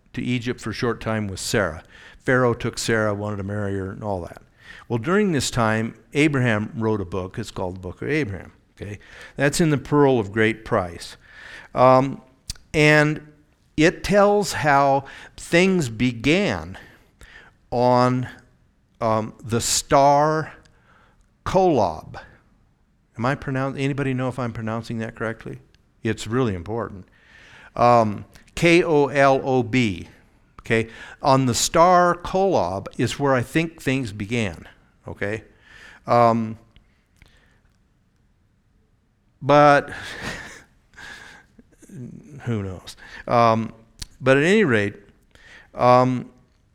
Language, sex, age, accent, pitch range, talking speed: English, male, 60-79, American, 110-140 Hz, 115 wpm